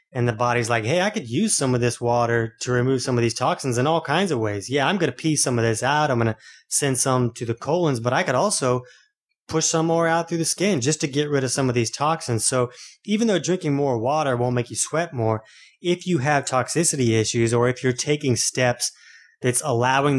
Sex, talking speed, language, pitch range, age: male, 245 wpm, English, 115-145 Hz, 20-39